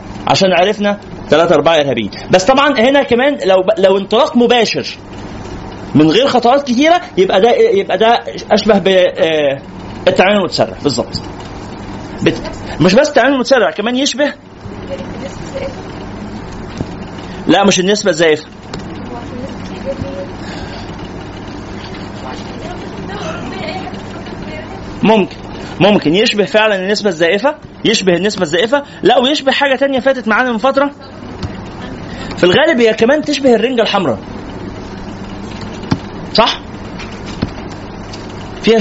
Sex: male